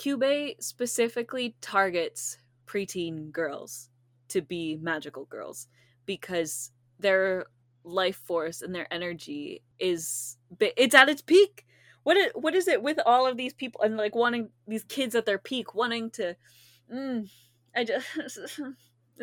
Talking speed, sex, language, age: 135 wpm, female, English, 20-39